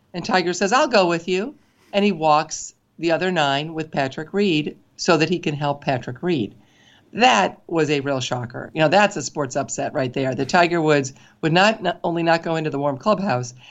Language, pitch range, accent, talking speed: English, 135-170 Hz, American, 210 wpm